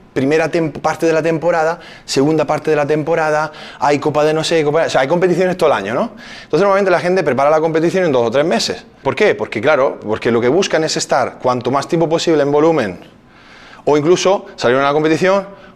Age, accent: 20-39, Spanish